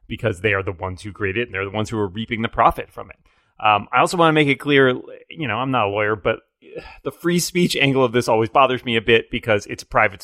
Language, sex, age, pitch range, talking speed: English, male, 30-49, 105-140 Hz, 285 wpm